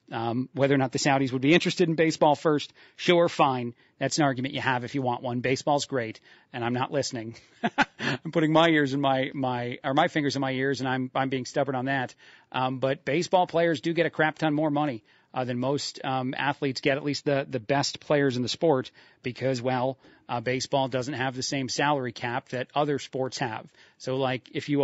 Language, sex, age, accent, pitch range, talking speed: English, male, 40-59, American, 130-155 Hz, 225 wpm